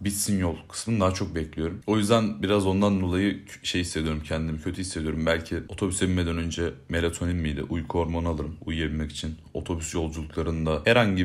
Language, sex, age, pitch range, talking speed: Turkish, male, 30-49, 80-95 Hz, 160 wpm